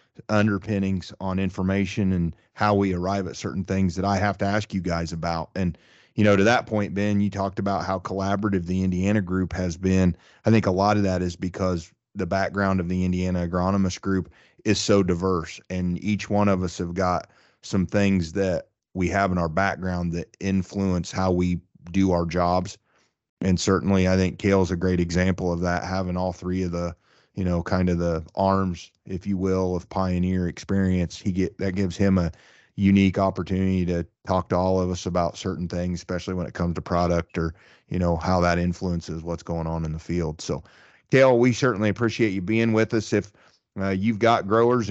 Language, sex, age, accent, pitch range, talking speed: English, male, 30-49, American, 90-100 Hz, 205 wpm